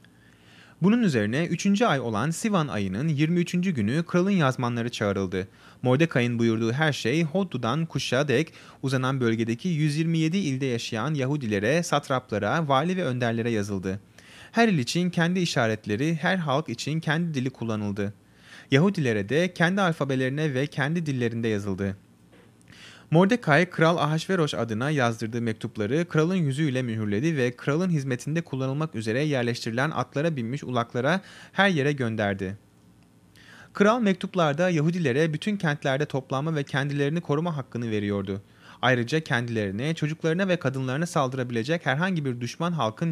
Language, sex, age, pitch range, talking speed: Turkish, male, 30-49, 115-165 Hz, 125 wpm